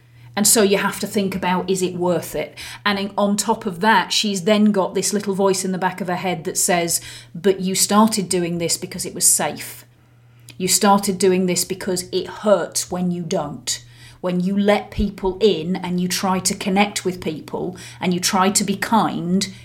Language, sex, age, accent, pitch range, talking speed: English, female, 40-59, British, 180-215 Hz, 205 wpm